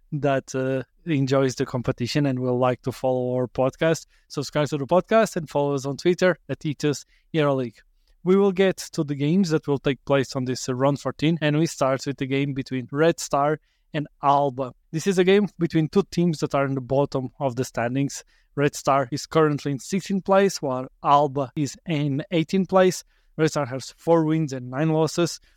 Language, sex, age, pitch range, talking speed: English, male, 20-39, 135-160 Hz, 200 wpm